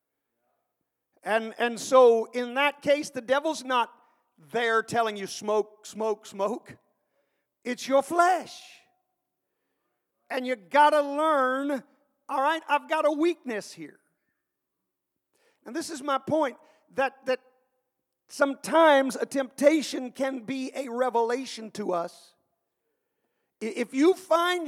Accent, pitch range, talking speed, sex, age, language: American, 230-295 Hz, 120 wpm, male, 50-69, English